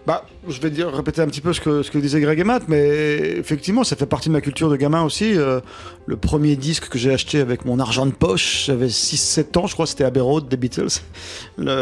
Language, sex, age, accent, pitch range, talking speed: French, male, 40-59, French, 130-160 Hz, 260 wpm